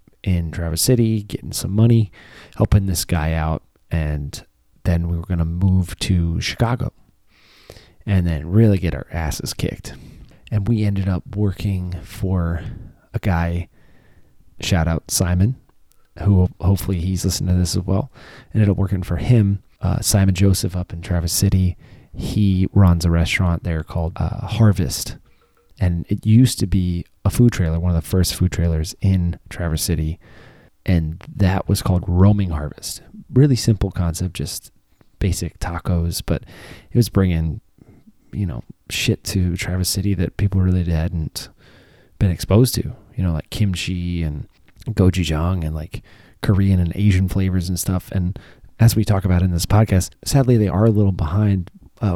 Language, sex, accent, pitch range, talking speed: English, male, American, 85-105 Hz, 160 wpm